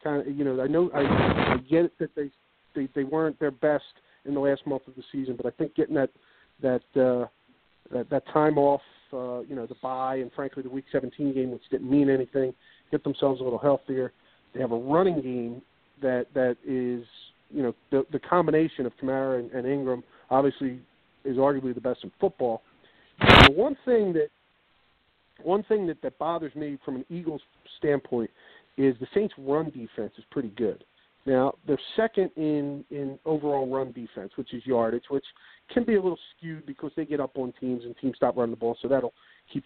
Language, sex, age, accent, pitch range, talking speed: English, male, 50-69, American, 130-150 Hz, 205 wpm